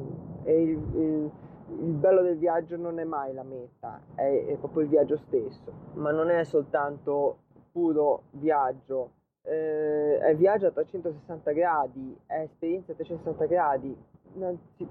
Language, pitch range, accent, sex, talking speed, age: Italian, 145-175 Hz, native, male, 140 wpm, 20-39